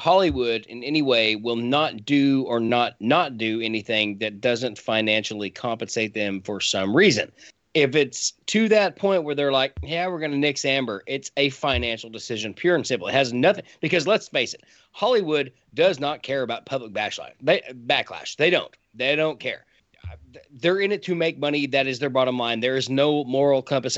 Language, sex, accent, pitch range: English, male, American, 125-195 Hz